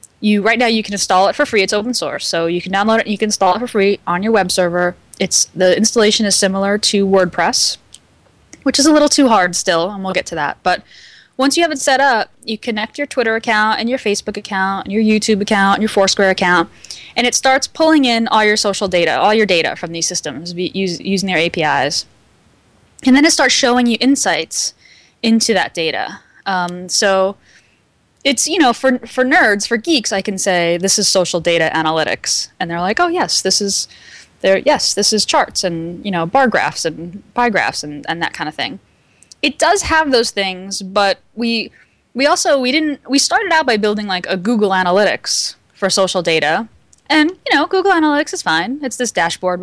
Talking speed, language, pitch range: 215 wpm, English, 185-255 Hz